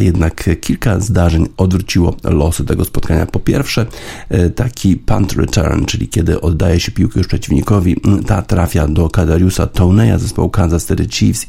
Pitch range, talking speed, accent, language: 85-100 Hz, 145 wpm, native, Polish